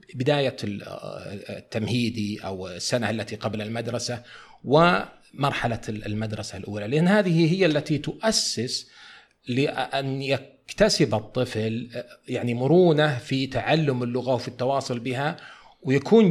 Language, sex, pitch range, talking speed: Arabic, male, 110-150 Hz, 100 wpm